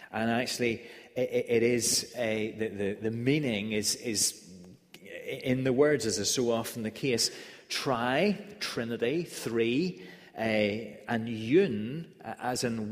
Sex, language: male, English